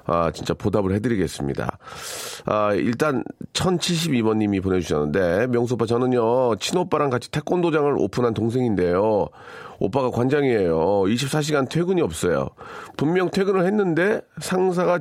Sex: male